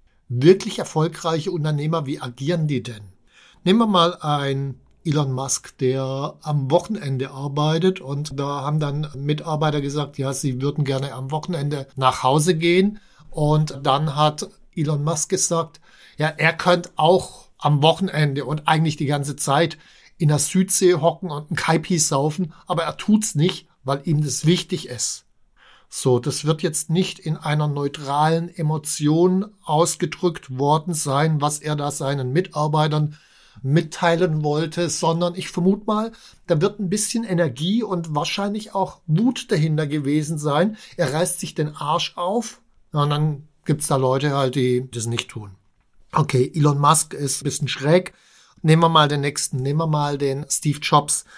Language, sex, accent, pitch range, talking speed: German, male, German, 145-175 Hz, 160 wpm